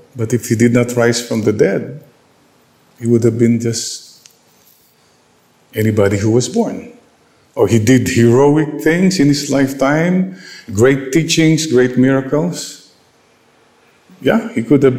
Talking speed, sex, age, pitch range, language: 135 wpm, male, 50-69, 110-140 Hz, English